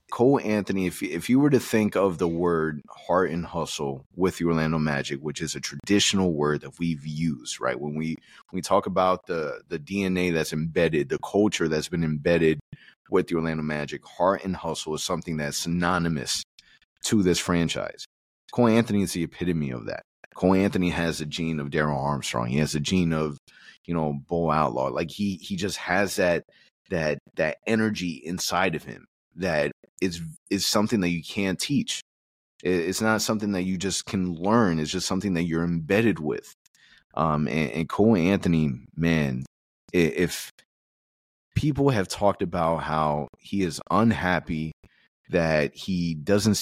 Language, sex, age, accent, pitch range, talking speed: English, male, 30-49, American, 75-95 Hz, 170 wpm